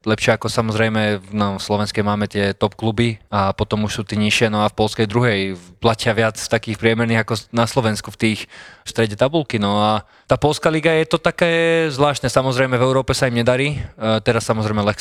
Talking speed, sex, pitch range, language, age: 200 wpm, male, 105-115 Hz, Slovak, 20-39